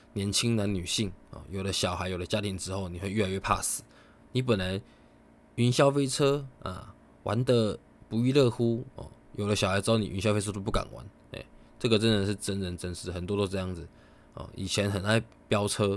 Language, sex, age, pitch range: Chinese, male, 20-39, 90-105 Hz